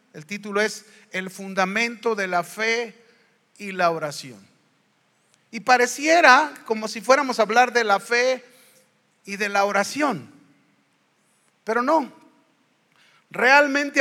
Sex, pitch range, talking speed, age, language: male, 200-255 Hz, 120 wpm, 40-59, Spanish